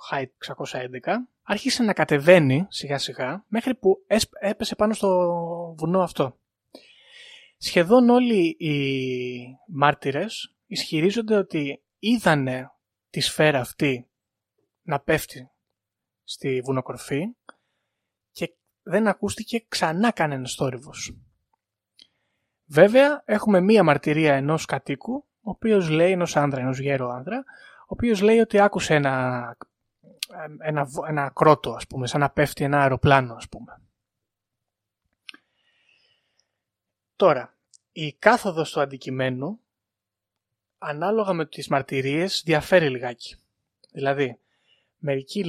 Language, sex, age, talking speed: Greek, male, 20-39, 105 wpm